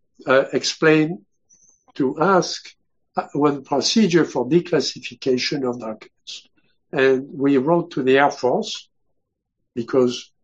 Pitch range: 130-155 Hz